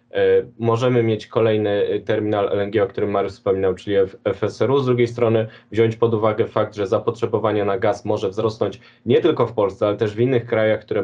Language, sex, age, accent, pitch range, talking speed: Polish, male, 20-39, native, 105-120 Hz, 195 wpm